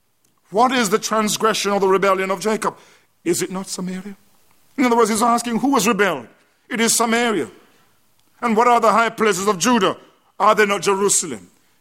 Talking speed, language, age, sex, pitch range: 185 wpm, English, 50-69, male, 200-235 Hz